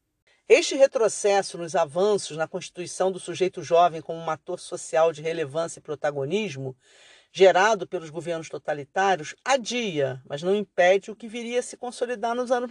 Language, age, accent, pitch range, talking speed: Portuguese, 50-69, Brazilian, 175-245 Hz, 155 wpm